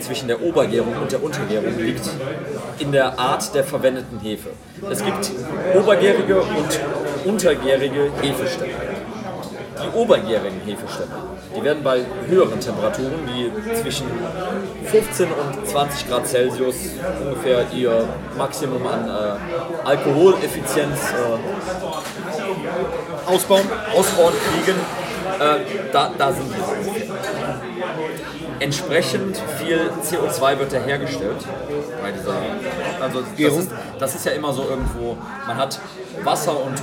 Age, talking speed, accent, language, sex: 40-59, 115 wpm, German, German, male